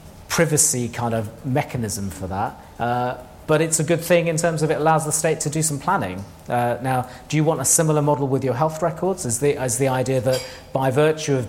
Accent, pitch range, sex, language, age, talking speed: British, 120-145 Hz, male, English, 40-59, 230 wpm